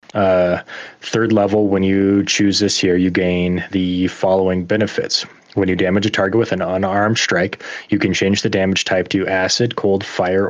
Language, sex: English, male